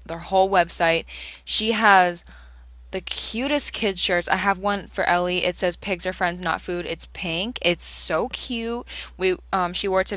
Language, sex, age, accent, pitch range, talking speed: English, female, 10-29, American, 160-195 Hz, 190 wpm